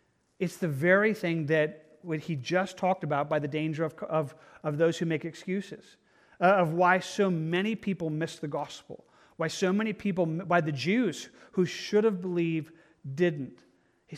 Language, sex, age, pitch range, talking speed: English, male, 40-59, 155-185 Hz, 180 wpm